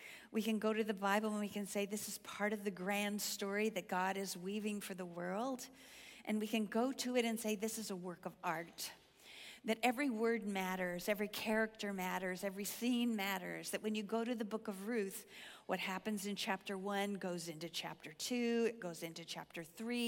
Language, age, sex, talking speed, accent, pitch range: English, 50-69, female, 210 wpm, American, 190-225 Hz